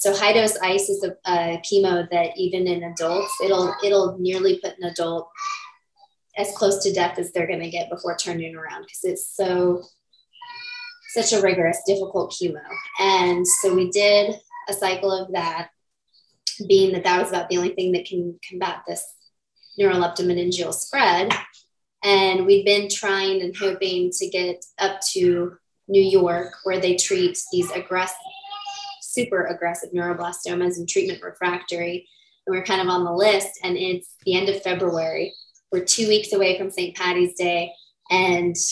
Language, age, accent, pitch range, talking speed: English, 20-39, American, 180-205 Hz, 160 wpm